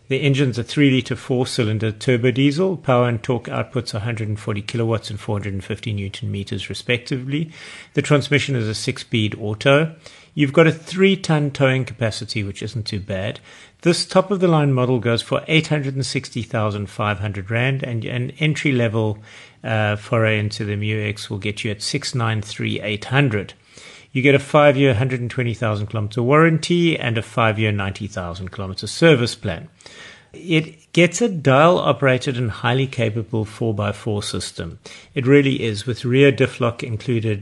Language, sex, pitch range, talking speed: English, male, 110-145 Hz, 135 wpm